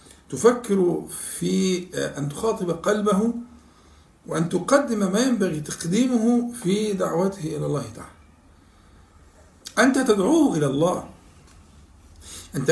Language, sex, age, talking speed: Arabic, male, 50-69, 95 wpm